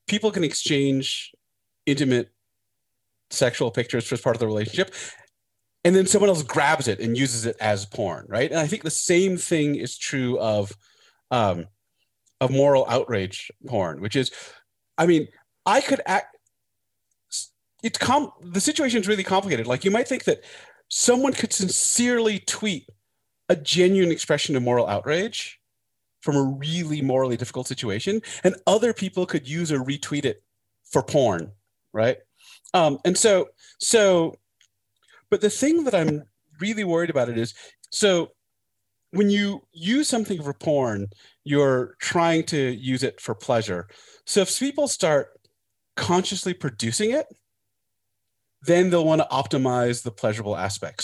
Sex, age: male, 30-49